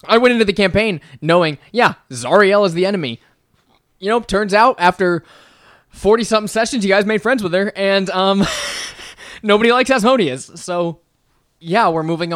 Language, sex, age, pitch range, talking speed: English, male, 20-39, 130-180 Hz, 160 wpm